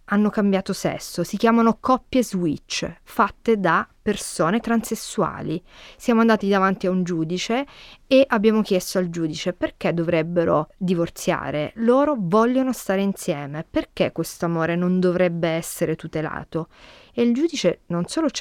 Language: Italian